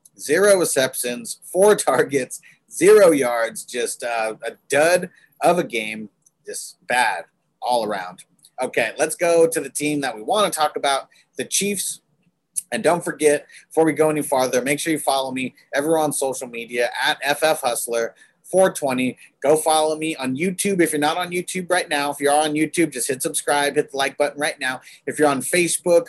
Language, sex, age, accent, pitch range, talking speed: English, male, 30-49, American, 135-165 Hz, 180 wpm